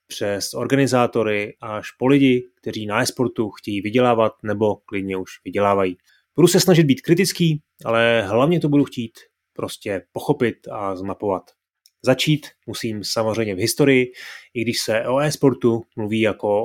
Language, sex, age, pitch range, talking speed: Czech, male, 30-49, 105-130 Hz, 145 wpm